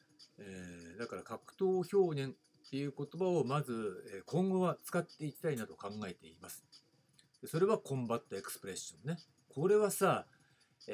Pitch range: 120-175 Hz